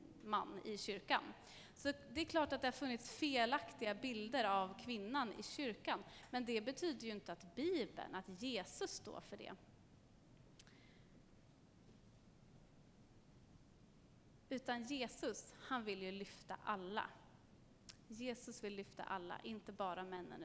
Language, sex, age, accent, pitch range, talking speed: Swedish, female, 30-49, native, 195-260 Hz, 125 wpm